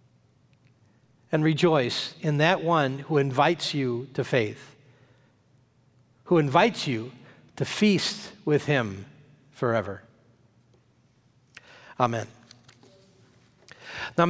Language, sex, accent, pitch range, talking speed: English, male, American, 130-170 Hz, 85 wpm